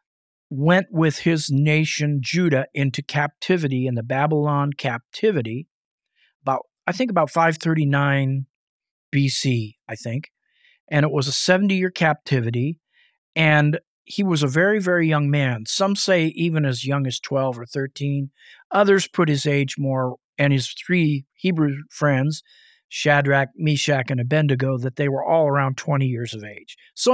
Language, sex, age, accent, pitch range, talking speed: English, male, 40-59, American, 135-170 Hz, 150 wpm